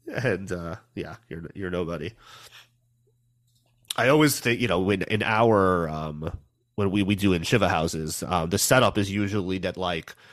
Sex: male